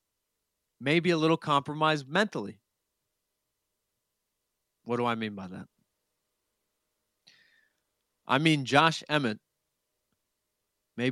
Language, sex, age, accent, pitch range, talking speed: English, male, 30-49, American, 115-150 Hz, 85 wpm